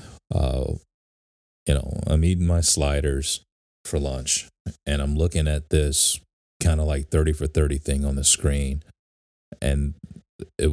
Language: English